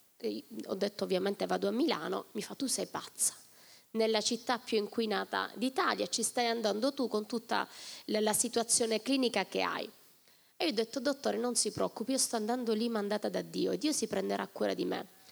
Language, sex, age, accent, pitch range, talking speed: Italian, female, 20-39, native, 215-270 Hz, 200 wpm